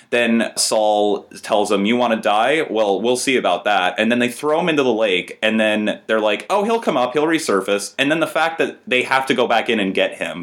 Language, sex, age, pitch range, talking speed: English, male, 20-39, 95-120 Hz, 260 wpm